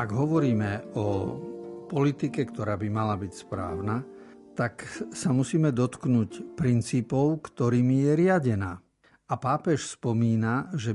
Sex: male